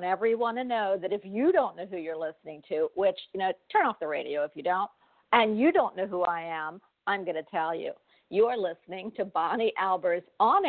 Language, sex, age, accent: English, female, 50-69, American